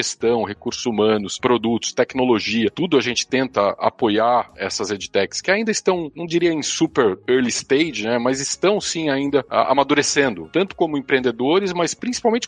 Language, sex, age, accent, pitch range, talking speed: Portuguese, male, 40-59, Brazilian, 115-165 Hz, 160 wpm